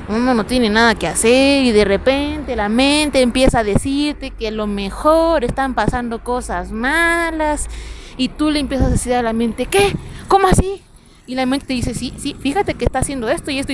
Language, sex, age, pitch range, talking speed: Spanish, female, 30-49, 245-315 Hz, 200 wpm